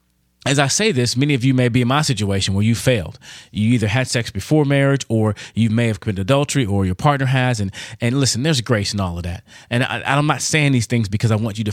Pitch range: 105-140 Hz